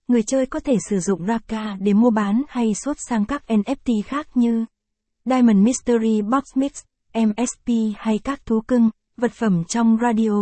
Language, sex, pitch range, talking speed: Vietnamese, female, 210-240 Hz, 175 wpm